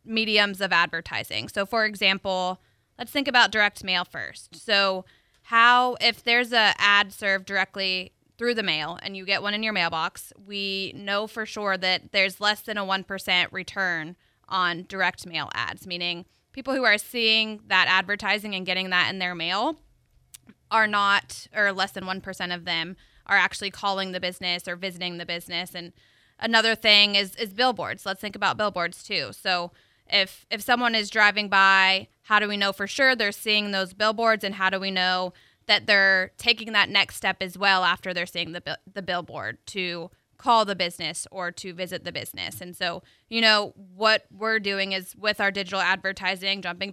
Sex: female